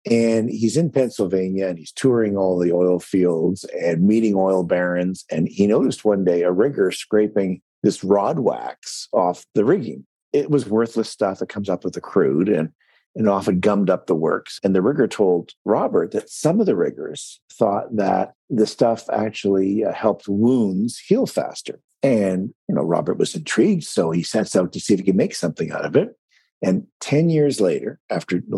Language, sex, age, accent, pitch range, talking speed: English, male, 50-69, American, 95-115 Hz, 190 wpm